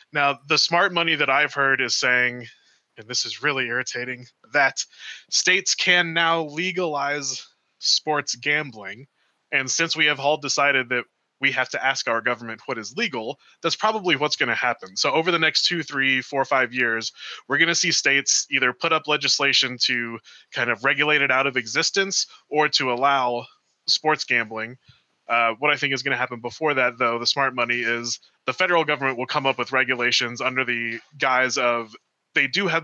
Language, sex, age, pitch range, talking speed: English, male, 20-39, 125-155 Hz, 190 wpm